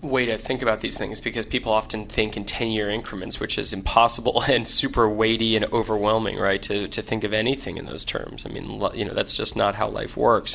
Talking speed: 240 wpm